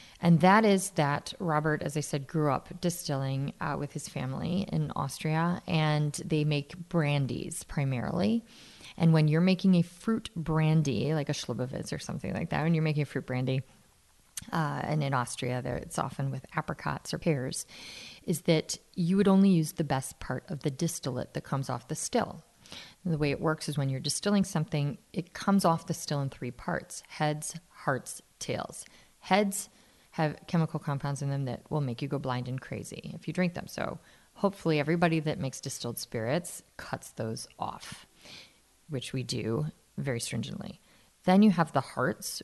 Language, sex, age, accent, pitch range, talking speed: English, female, 30-49, American, 140-180 Hz, 180 wpm